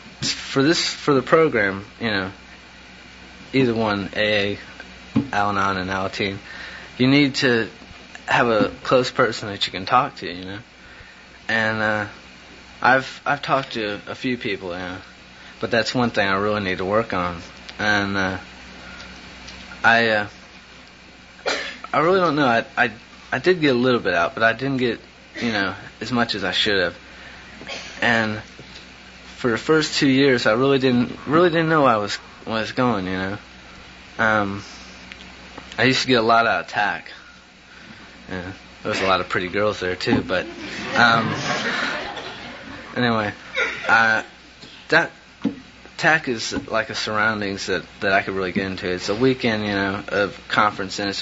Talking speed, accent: 170 wpm, American